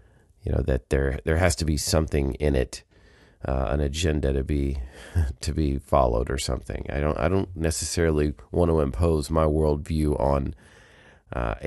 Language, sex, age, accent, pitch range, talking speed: English, male, 30-49, American, 70-85 Hz, 175 wpm